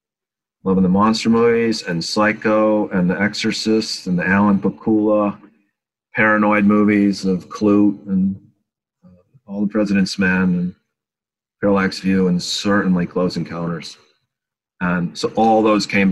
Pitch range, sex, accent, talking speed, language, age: 90-105 Hz, male, American, 130 wpm, English, 40-59